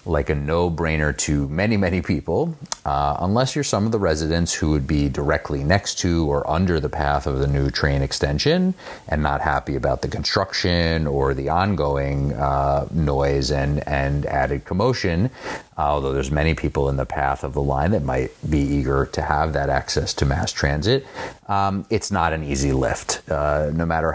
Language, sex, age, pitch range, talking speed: English, male, 30-49, 70-80 Hz, 185 wpm